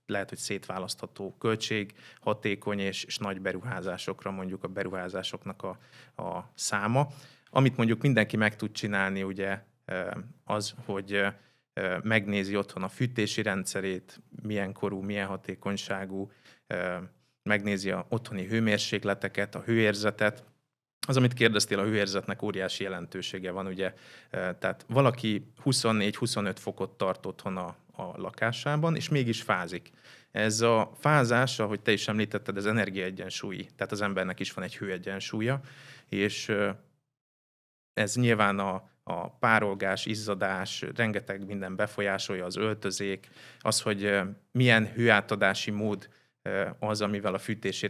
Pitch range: 95-115 Hz